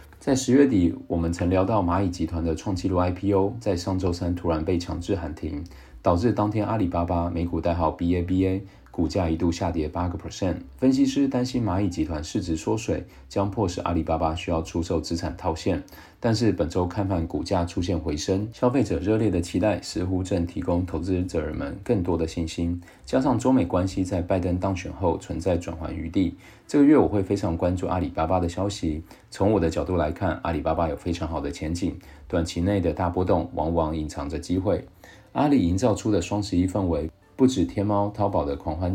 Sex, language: male, Chinese